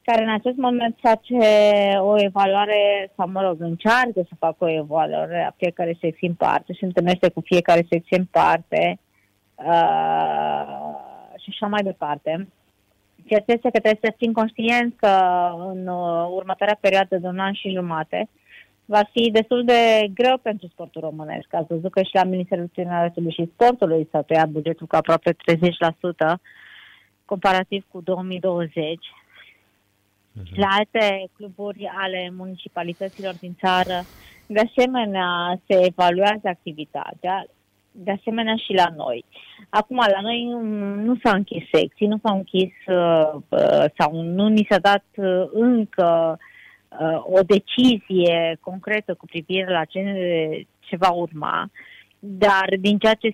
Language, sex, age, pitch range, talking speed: Romanian, female, 20-39, 170-205 Hz, 135 wpm